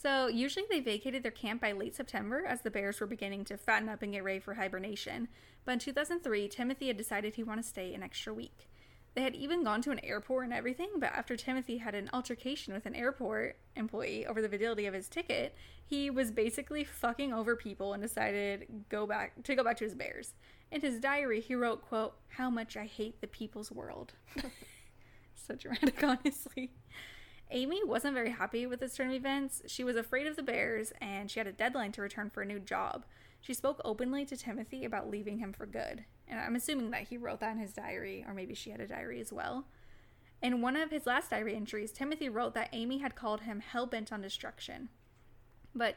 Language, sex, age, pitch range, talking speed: English, female, 10-29, 215-265 Hz, 215 wpm